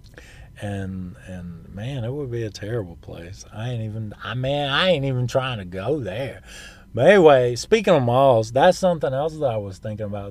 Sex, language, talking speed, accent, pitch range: male, English, 200 wpm, American, 105-135 Hz